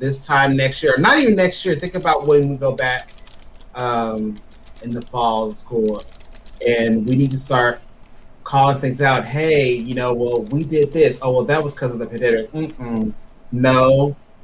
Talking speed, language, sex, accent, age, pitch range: 190 wpm, English, male, American, 30-49, 120-145 Hz